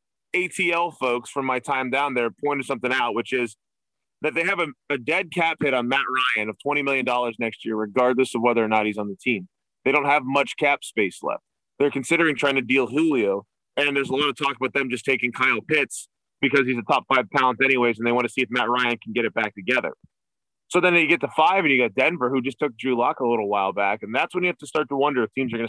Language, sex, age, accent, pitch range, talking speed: English, male, 20-39, American, 120-145 Hz, 265 wpm